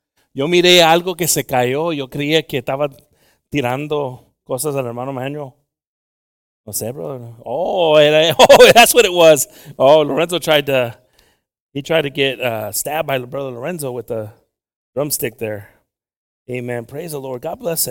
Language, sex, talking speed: English, male, 160 wpm